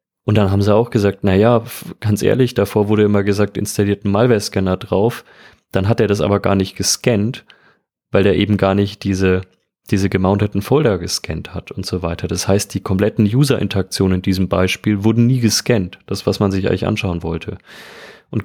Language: German